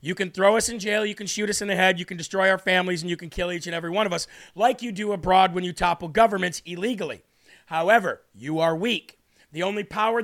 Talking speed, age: 260 wpm, 40-59